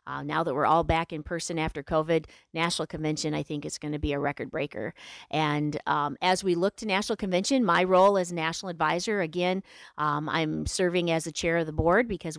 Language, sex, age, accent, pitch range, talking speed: English, female, 40-59, American, 155-190 Hz, 220 wpm